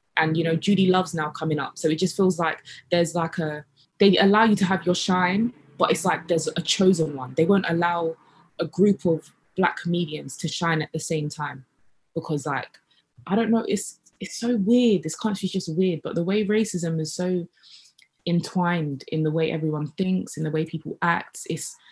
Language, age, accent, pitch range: English, 20-39, British, 155-180 Hz